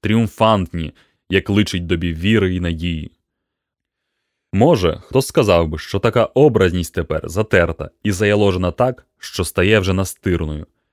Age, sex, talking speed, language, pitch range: 20-39, male, 125 wpm, Ukrainian, 90-105 Hz